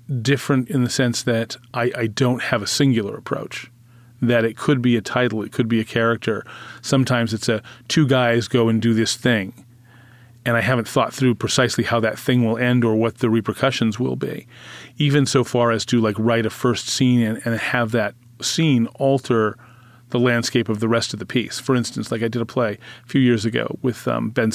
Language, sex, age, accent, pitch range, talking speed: English, male, 30-49, American, 115-130 Hz, 215 wpm